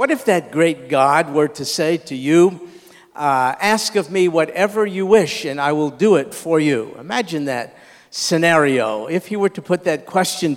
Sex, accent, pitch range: male, American, 165-200 Hz